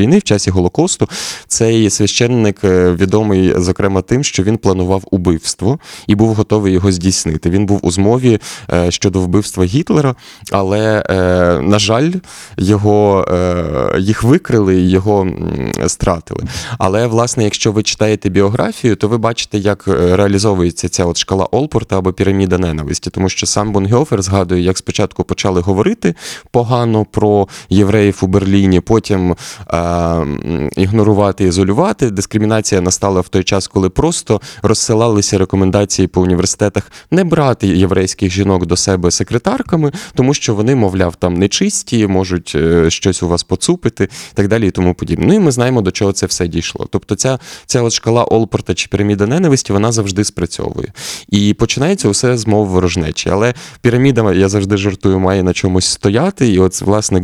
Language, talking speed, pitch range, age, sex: Ukrainian, 150 wpm, 95-115 Hz, 20-39, male